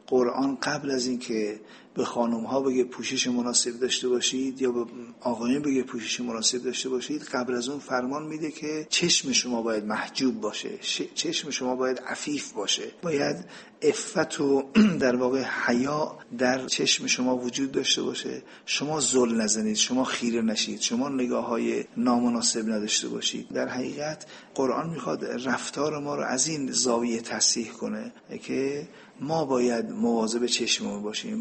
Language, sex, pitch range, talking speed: Persian, male, 120-135 Hz, 150 wpm